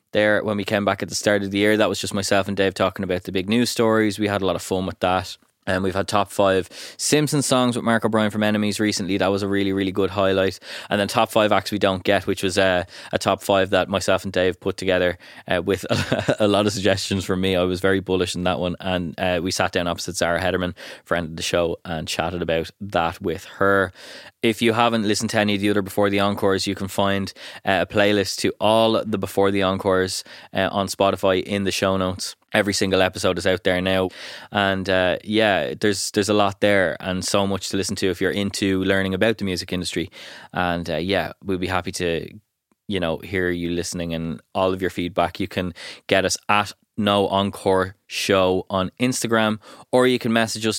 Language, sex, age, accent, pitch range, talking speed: English, male, 20-39, Irish, 95-105 Hz, 235 wpm